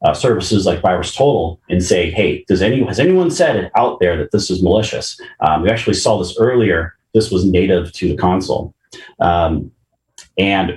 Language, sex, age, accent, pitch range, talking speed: English, male, 30-49, American, 90-110 Hz, 190 wpm